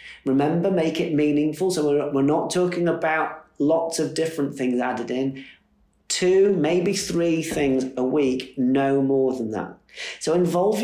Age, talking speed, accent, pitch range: 30-49, 155 wpm, British, 150-195 Hz